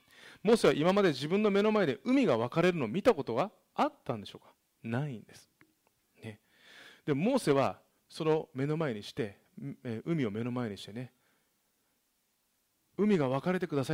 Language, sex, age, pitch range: Japanese, male, 40-59, 115-175 Hz